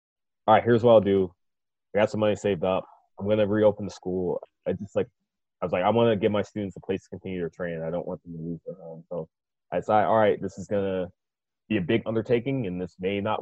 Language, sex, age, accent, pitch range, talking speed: English, male, 20-39, American, 85-100 Hz, 275 wpm